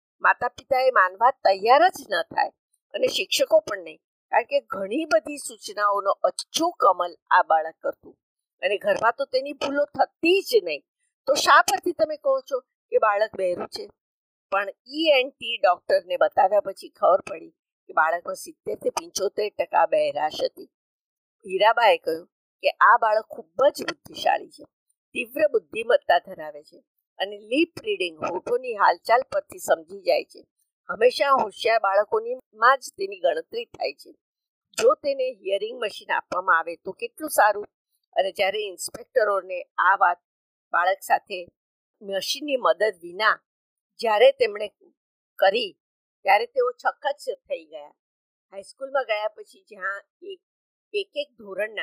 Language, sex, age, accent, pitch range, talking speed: Gujarati, female, 50-69, native, 205-345 Hz, 80 wpm